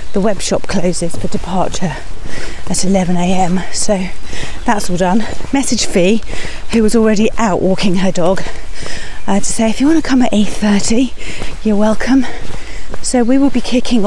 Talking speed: 160 wpm